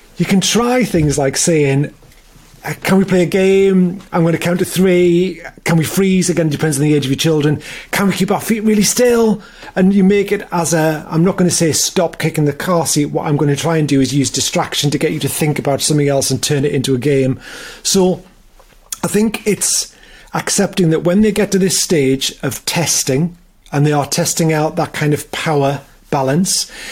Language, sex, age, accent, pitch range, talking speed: English, male, 30-49, British, 145-185 Hz, 220 wpm